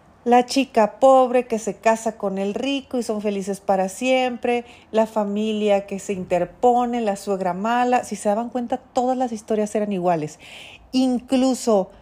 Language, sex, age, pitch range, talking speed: Spanish, female, 40-59, 205-250 Hz, 160 wpm